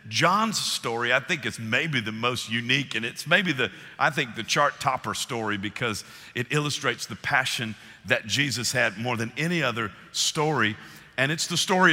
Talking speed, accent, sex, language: 180 wpm, American, male, English